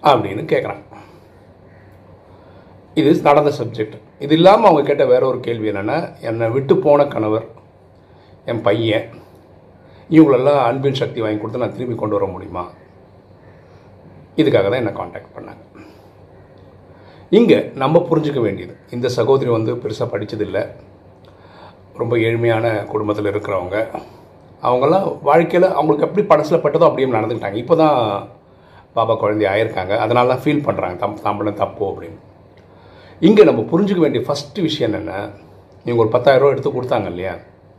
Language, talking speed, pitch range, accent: Tamil, 125 wpm, 100-145 Hz, native